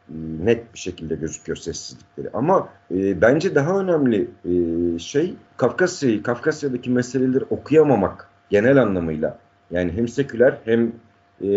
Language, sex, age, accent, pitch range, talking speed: Turkish, male, 50-69, native, 100-140 Hz, 120 wpm